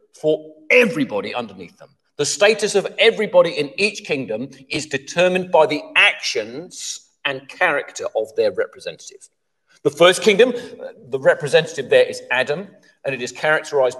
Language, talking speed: English, 140 wpm